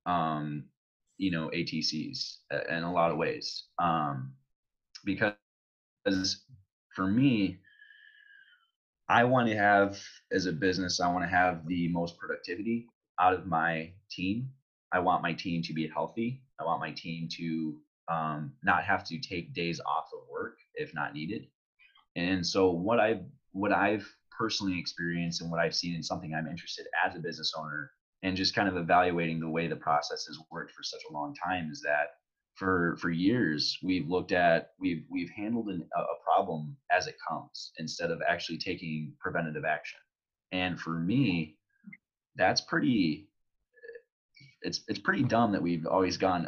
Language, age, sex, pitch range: English, 20-39, male, 80-105 Hz